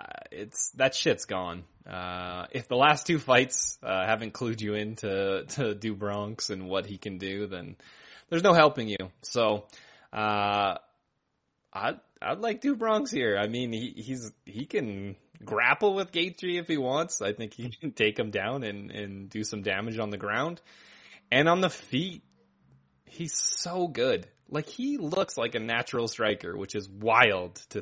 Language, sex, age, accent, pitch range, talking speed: English, male, 20-39, American, 95-130 Hz, 180 wpm